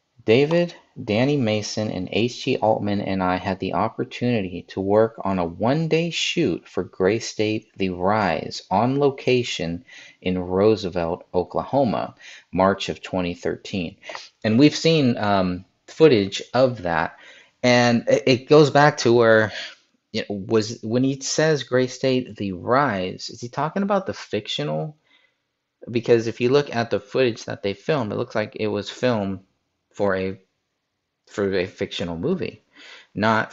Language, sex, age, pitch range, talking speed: English, male, 30-49, 90-125 Hz, 145 wpm